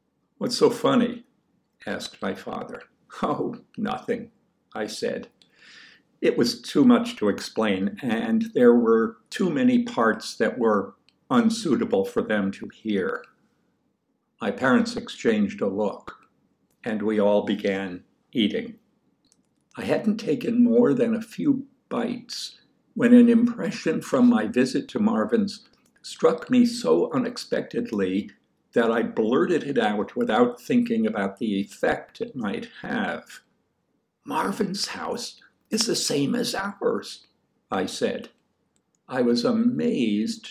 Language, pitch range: English, 225-245 Hz